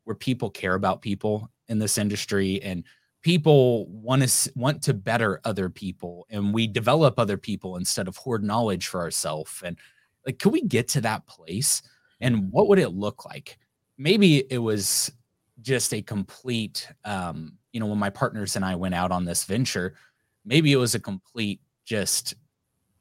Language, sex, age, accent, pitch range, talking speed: English, male, 20-39, American, 95-125 Hz, 175 wpm